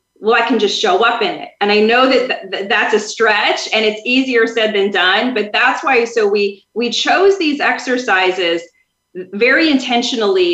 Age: 30-49